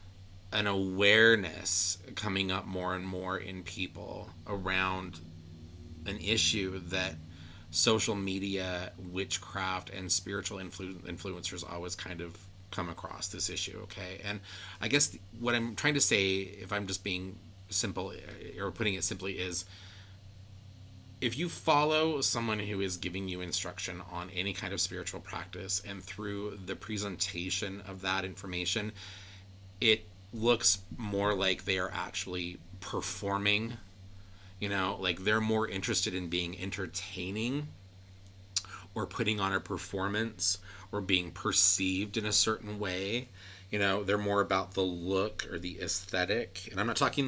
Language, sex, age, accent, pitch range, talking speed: English, male, 30-49, American, 95-105 Hz, 140 wpm